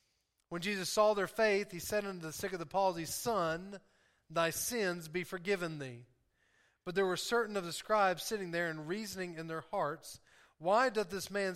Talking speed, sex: 190 wpm, male